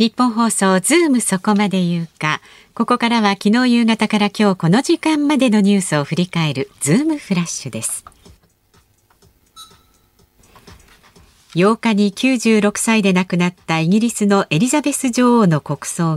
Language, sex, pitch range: Japanese, female, 165-230 Hz